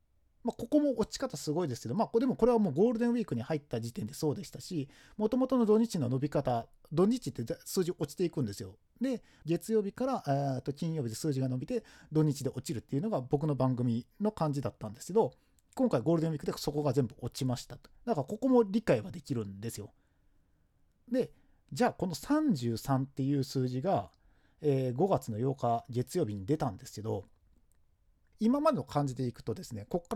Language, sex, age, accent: Japanese, male, 40-59, native